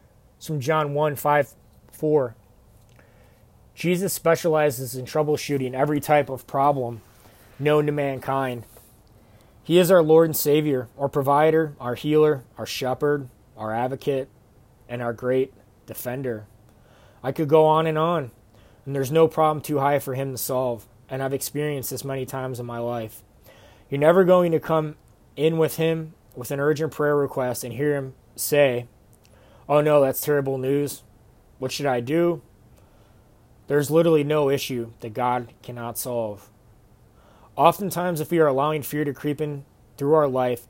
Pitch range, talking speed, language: 115-150 Hz, 155 wpm, English